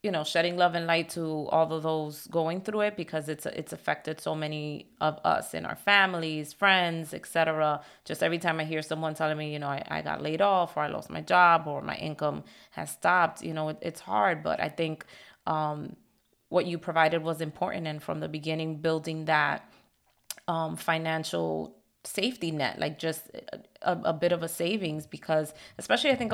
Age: 30-49